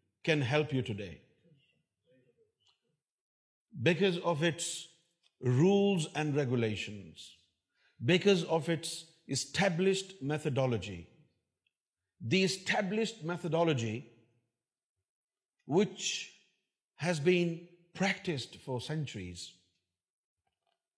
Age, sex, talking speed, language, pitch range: 50-69, male, 70 wpm, Urdu, 130-190 Hz